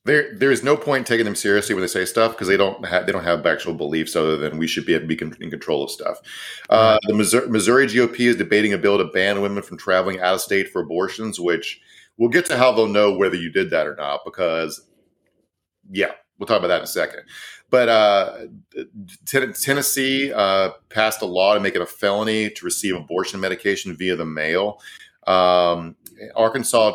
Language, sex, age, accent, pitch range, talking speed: English, male, 40-59, American, 95-115 Hz, 215 wpm